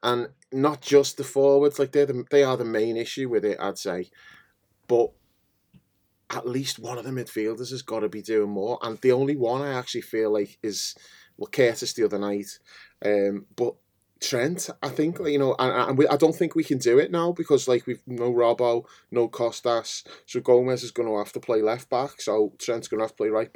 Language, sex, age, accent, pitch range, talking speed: English, male, 20-39, British, 105-135 Hz, 220 wpm